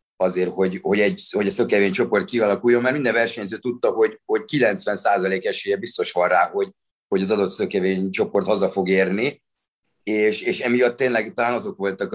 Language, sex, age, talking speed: Hungarian, male, 30-49, 175 wpm